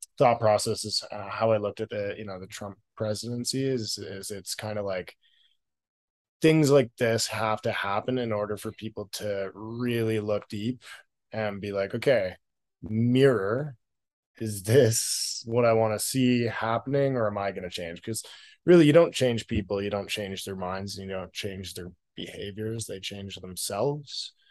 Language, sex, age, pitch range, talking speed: English, male, 20-39, 100-115 Hz, 180 wpm